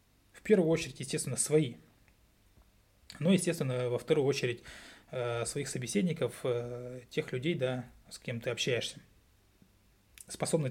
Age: 20-39